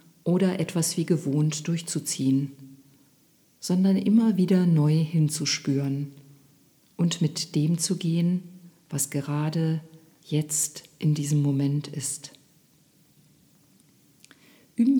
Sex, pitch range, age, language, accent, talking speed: female, 150-180 Hz, 50-69, German, German, 90 wpm